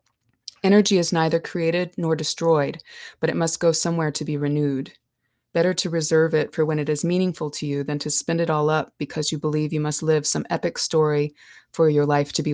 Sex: female